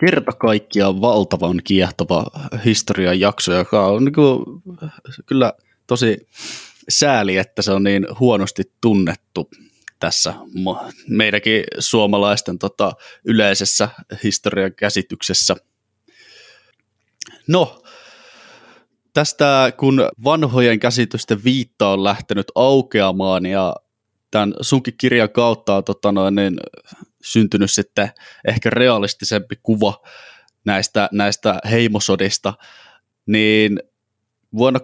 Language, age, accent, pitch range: Finnish, 20-39, native, 100-120 Hz